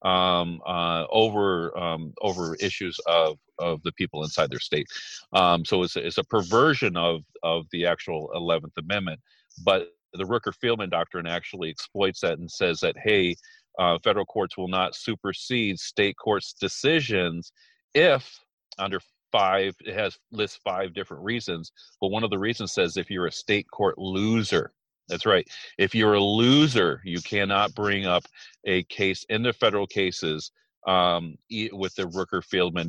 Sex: male